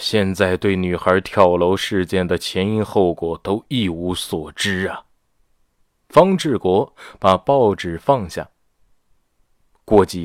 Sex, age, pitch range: male, 20-39, 95-140 Hz